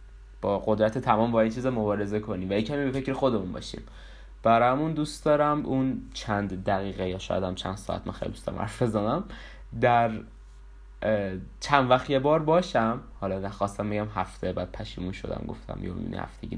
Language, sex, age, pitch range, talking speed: Persian, male, 20-39, 100-125 Hz, 165 wpm